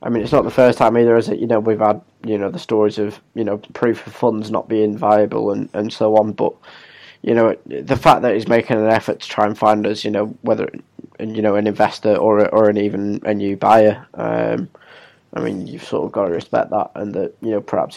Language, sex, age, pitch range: English, male, 10-29, 105-130 Hz